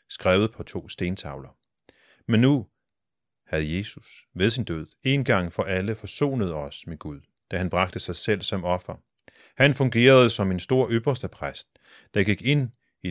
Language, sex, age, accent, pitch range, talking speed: Danish, male, 40-59, native, 85-110 Hz, 170 wpm